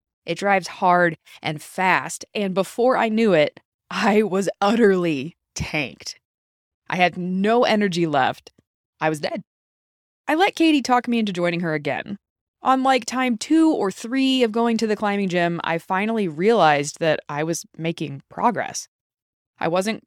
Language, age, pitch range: English, 20-39, 170-245 Hz